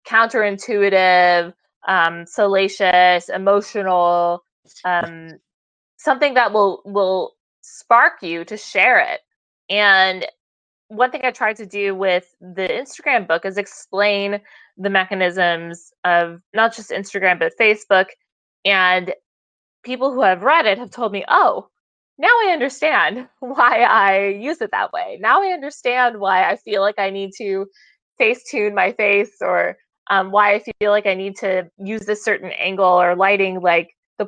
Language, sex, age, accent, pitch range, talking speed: English, female, 20-39, American, 185-235 Hz, 150 wpm